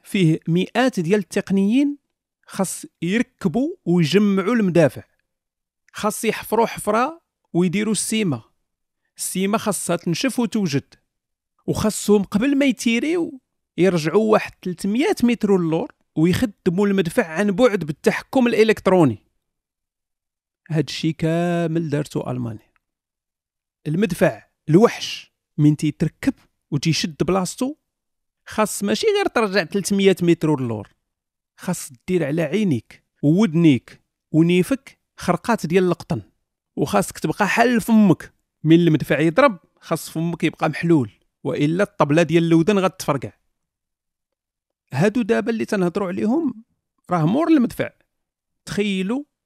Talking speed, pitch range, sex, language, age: 105 wpm, 155-215 Hz, male, Arabic, 40-59